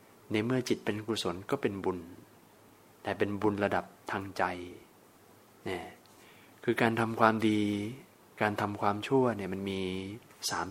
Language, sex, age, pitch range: Thai, male, 20-39, 100-115 Hz